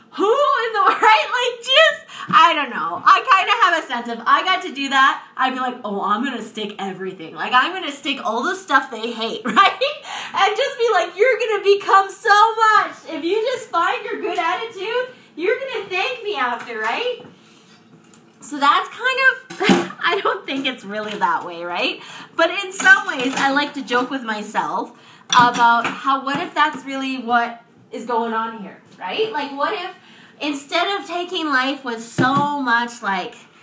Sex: female